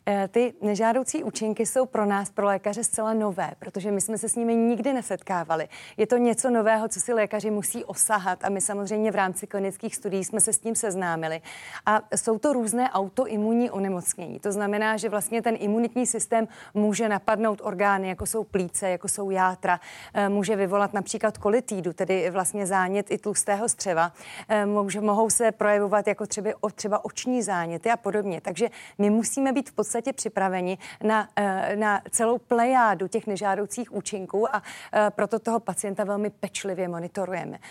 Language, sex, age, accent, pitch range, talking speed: Czech, female, 30-49, native, 200-225 Hz, 160 wpm